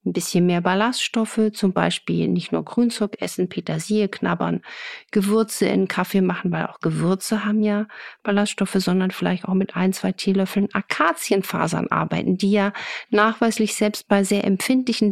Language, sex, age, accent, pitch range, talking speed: German, female, 50-69, German, 185-215 Hz, 150 wpm